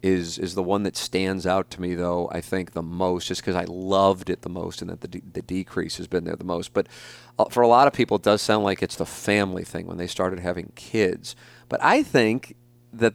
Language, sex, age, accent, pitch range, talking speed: English, male, 40-59, American, 90-115 Hz, 250 wpm